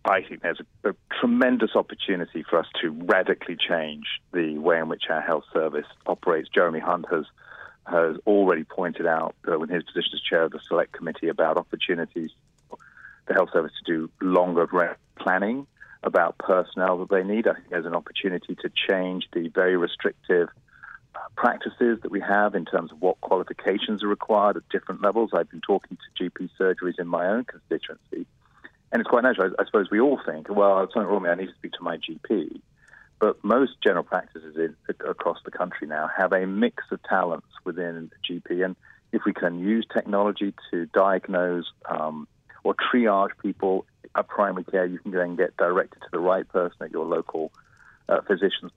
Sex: male